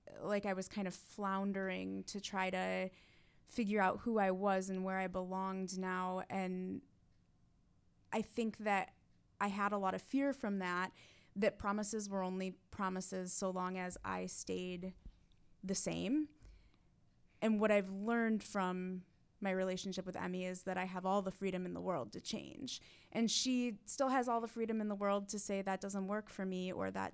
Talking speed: 185 wpm